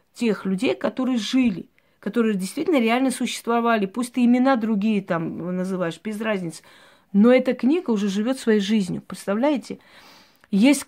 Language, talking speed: Russian, 140 wpm